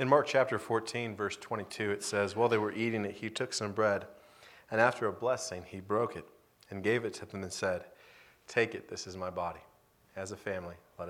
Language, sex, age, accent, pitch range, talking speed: English, male, 40-59, American, 95-115 Hz, 220 wpm